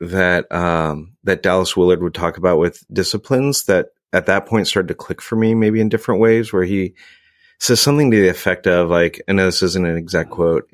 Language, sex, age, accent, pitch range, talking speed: English, male, 30-49, American, 85-105 Hz, 220 wpm